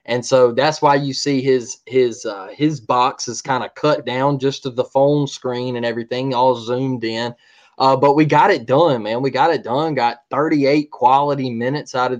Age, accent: 20-39, American